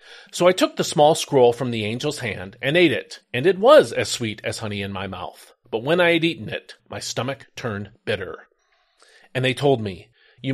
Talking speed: 215 wpm